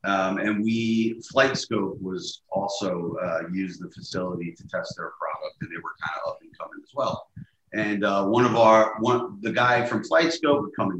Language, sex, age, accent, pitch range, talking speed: English, male, 30-49, American, 95-115 Hz, 195 wpm